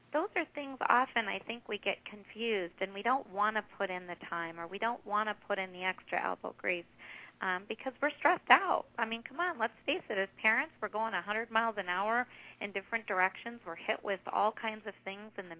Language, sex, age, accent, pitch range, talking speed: English, female, 50-69, American, 195-235 Hz, 235 wpm